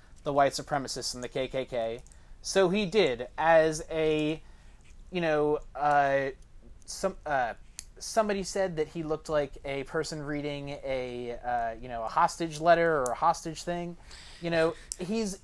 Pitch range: 135-190 Hz